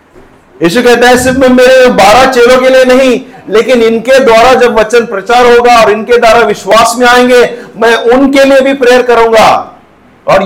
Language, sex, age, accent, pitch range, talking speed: Hindi, male, 50-69, native, 185-255 Hz, 170 wpm